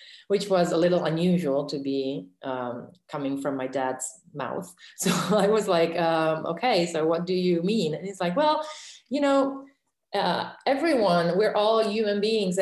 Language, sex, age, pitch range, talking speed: English, female, 30-49, 140-175 Hz, 170 wpm